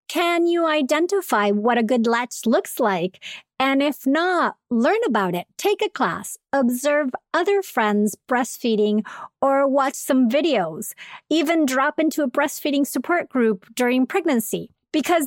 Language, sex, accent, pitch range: English, female, American, 230-295 Hz